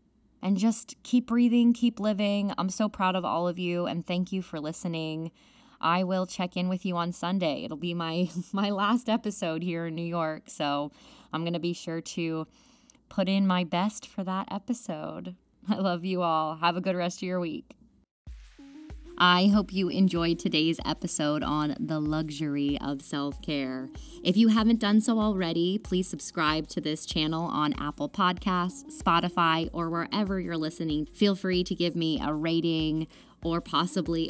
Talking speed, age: 175 wpm, 20-39